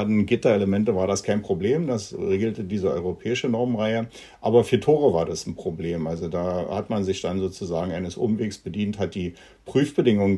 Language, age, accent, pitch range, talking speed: German, 60-79, German, 85-105 Hz, 175 wpm